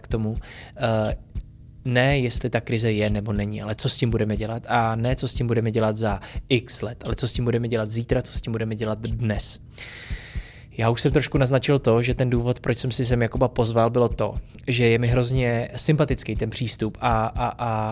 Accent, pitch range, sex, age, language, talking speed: native, 110-125 Hz, male, 20-39, Czech, 215 wpm